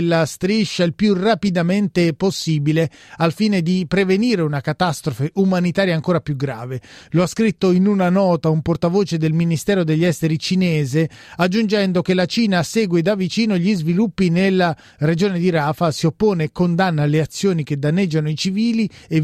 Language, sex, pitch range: Italian, male, 160-195 Hz